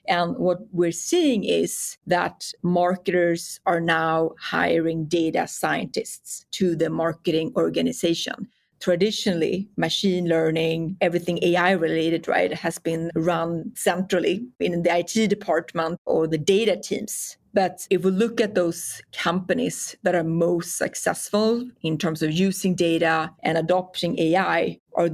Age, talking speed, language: 30-49, 130 wpm, English